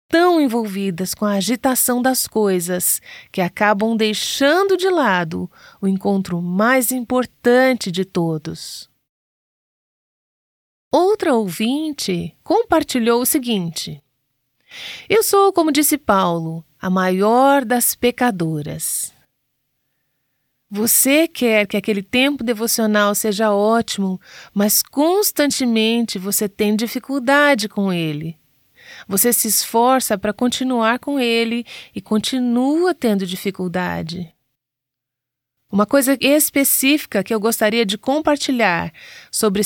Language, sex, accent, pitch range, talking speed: Portuguese, female, Brazilian, 185-255 Hz, 100 wpm